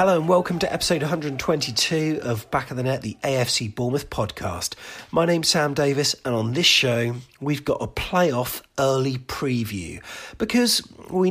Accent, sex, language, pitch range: British, male, English, 105-140 Hz